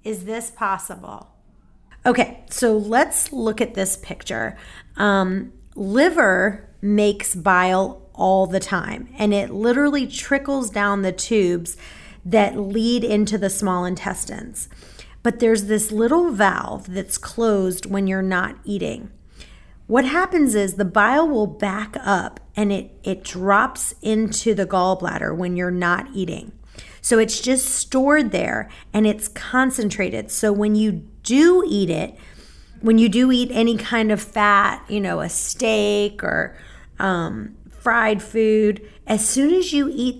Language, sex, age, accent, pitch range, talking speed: English, female, 30-49, American, 195-235 Hz, 140 wpm